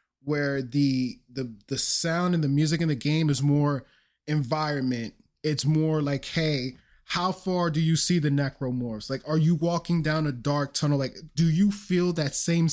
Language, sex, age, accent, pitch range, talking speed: English, male, 20-39, American, 140-170 Hz, 185 wpm